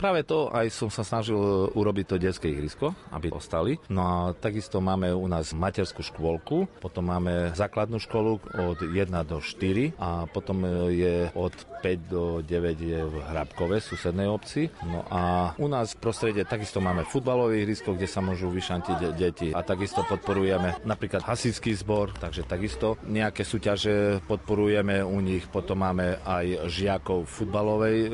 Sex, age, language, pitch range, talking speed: male, 40-59, Slovak, 90-110 Hz, 160 wpm